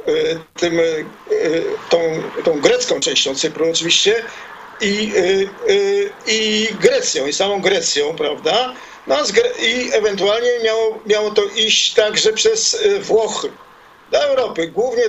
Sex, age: male, 50-69